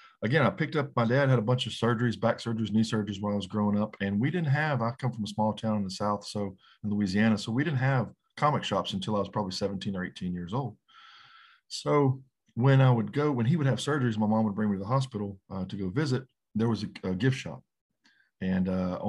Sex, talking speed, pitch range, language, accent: male, 255 wpm, 100-115 Hz, English, American